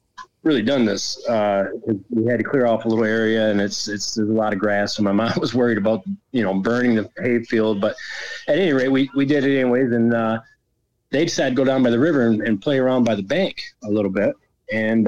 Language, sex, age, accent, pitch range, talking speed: English, male, 30-49, American, 110-135 Hz, 245 wpm